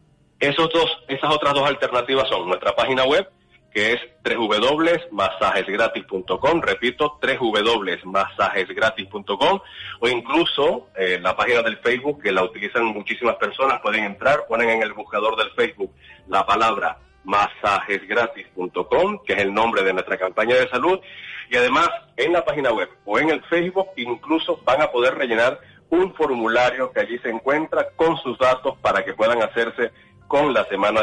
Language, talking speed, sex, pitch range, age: Spanish, 145 wpm, male, 110-160 Hz, 40-59